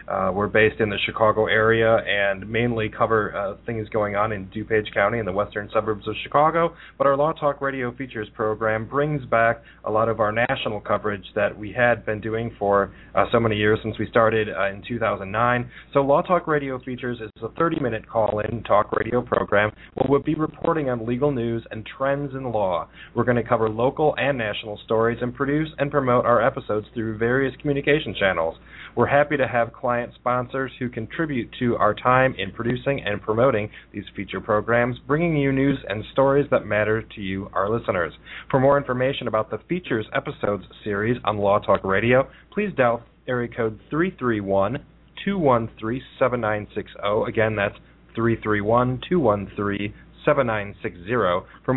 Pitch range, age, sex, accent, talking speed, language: 105-135 Hz, 30-49, male, American, 175 wpm, English